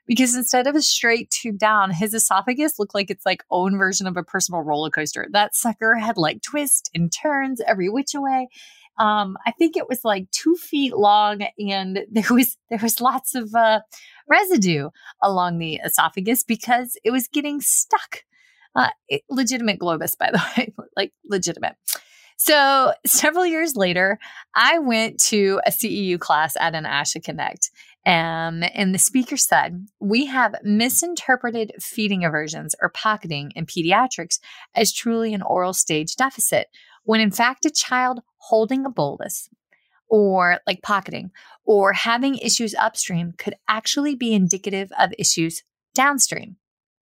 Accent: American